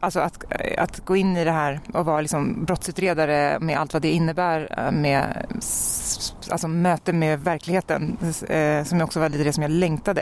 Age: 30-49